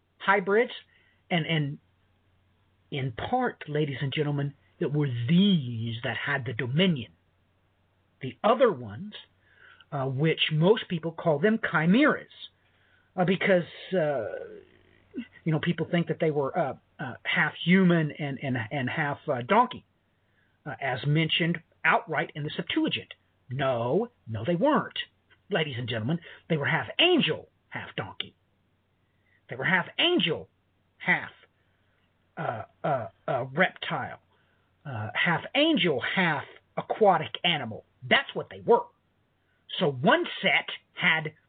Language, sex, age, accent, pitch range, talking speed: English, male, 50-69, American, 125-180 Hz, 125 wpm